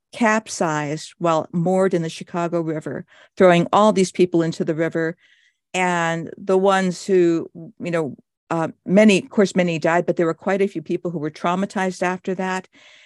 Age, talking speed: 50-69, 175 wpm